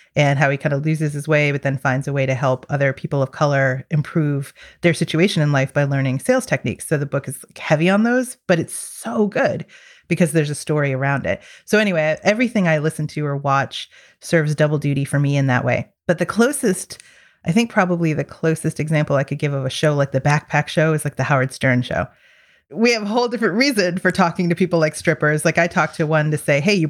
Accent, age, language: American, 30-49, English